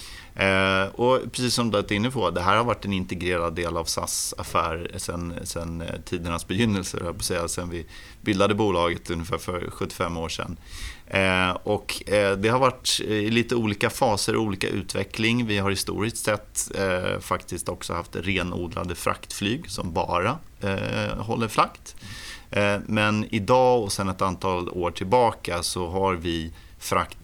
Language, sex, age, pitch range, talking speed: Danish, male, 30-49, 90-105 Hz, 145 wpm